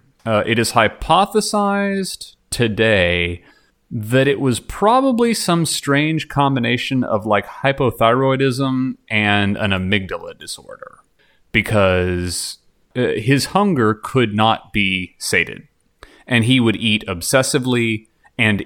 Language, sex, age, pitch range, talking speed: English, male, 30-49, 95-120 Hz, 105 wpm